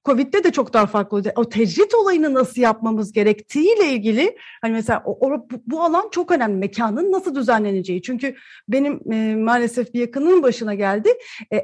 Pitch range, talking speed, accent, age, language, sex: 205-305 Hz, 170 wpm, native, 40-59, Turkish, female